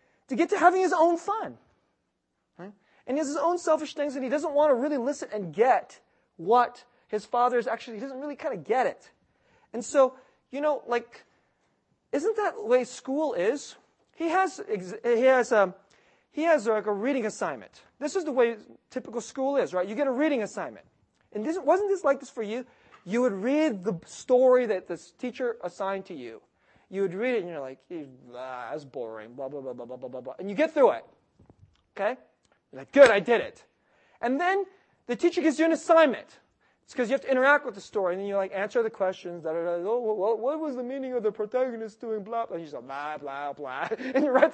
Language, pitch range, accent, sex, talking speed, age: English, 210-300 Hz, American, male, 230 wpm, 30-49